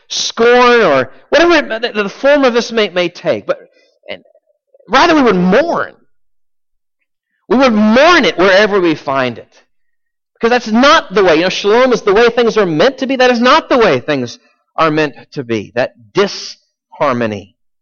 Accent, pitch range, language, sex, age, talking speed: American, 190-270 Hz, English, male, 40-59, 180 wpm